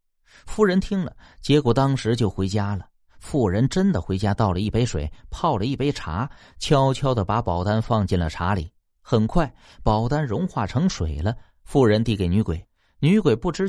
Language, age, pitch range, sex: Chinese, 30-49, 95-150 Hz, male